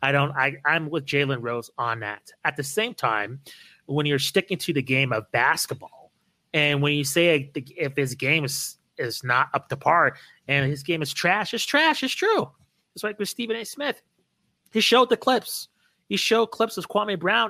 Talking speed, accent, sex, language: 205 wpm, American, male, English